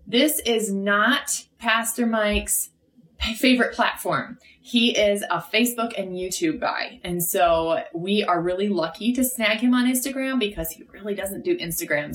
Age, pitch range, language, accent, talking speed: 20-39, 160-225 Hz, English, American, 155 wpm